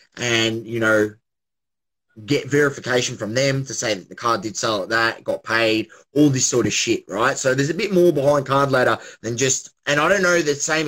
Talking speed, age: 220 wpm, 20-39